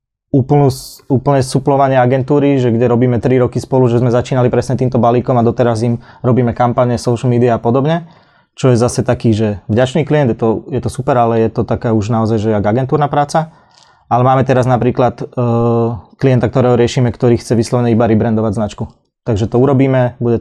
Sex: male